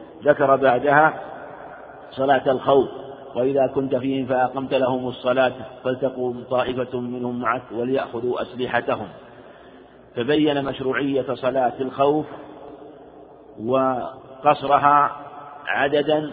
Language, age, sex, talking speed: Arabic, 50-69, male, 80 wpm